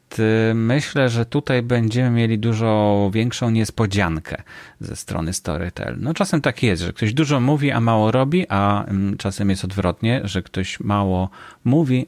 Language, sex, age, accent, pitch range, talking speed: Polish, male, 30-49, native, 95-115 Hz, 150 wpm